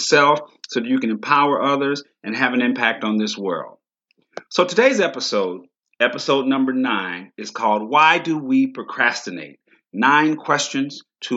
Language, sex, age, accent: English, male, 40-59, American